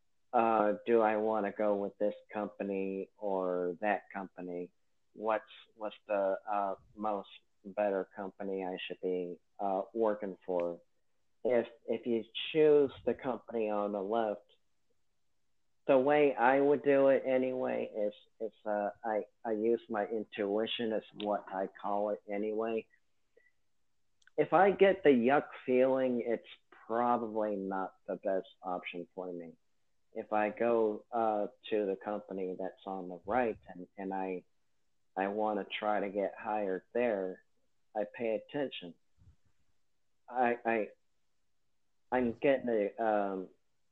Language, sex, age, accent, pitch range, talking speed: English, male, 50-69, American, 100-120 Hz, 135 wpm